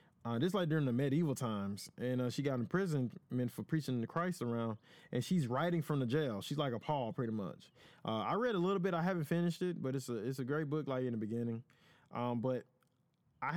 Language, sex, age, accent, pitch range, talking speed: English, male, 20-39, American, 130-165 Hz, 250 wpm